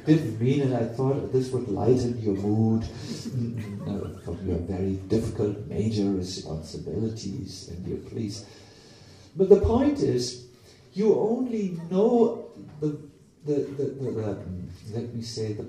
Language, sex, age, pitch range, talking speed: English, male, 50-69, 115-190 Hz, 140 wpm